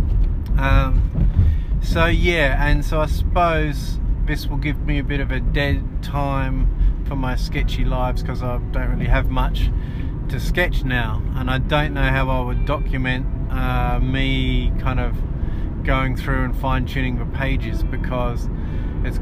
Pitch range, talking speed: 85-135 Hz, 155 wpm